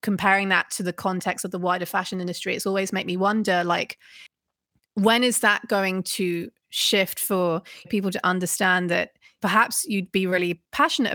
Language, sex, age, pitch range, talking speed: English, female, 20-39, 180-200 Hz, 170 wpm